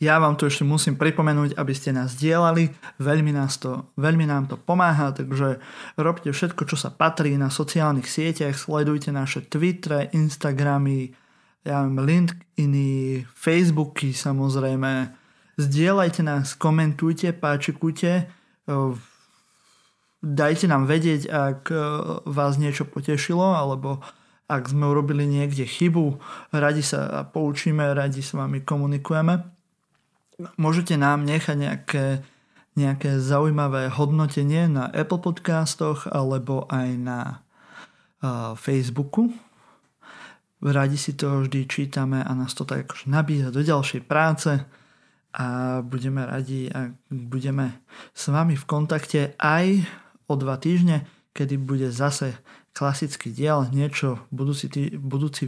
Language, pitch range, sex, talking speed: Slovak, 135-155 Hz, male, 115 wpm